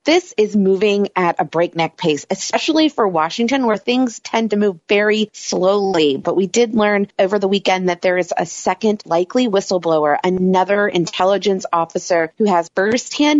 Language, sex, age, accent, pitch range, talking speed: English, female, 30-49, American, 175-220 Hz, 165 wpm